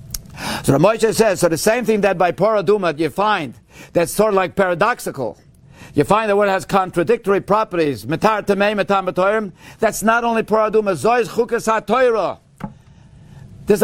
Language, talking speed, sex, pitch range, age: English, 130 wpm, male, 165-215 Hz, 50-69